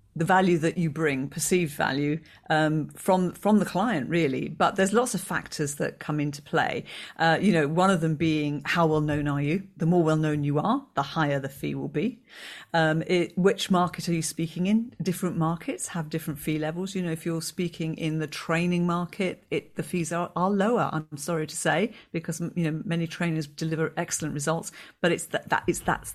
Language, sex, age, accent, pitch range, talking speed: English, female, 40-59, British, 160-190 Hz, 215 wpm